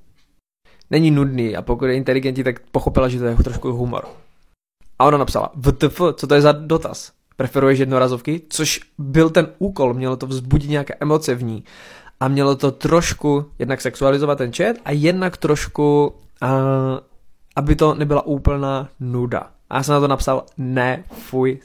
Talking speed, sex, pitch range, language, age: 165 wpm, male, 130-150 Hz, Czech, 20-39